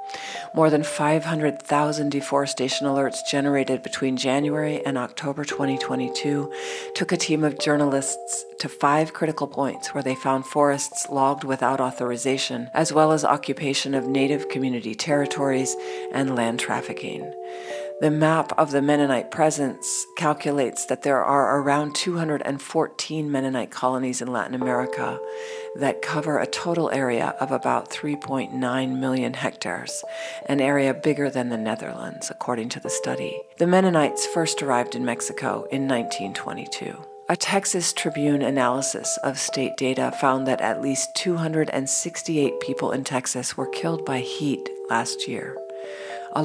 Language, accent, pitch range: English, American, 120-150 Hz